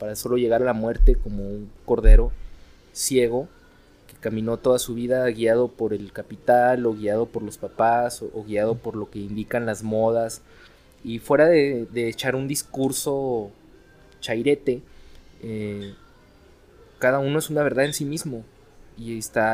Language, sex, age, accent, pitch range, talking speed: Spanish, male, 20-39, Mexican, 105-130 Hz, 160 wpm